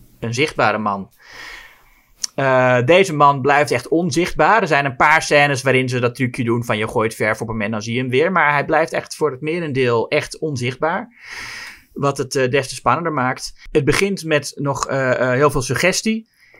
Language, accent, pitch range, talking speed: Dutch, Dutch, 120-155 Hz, 205 wpm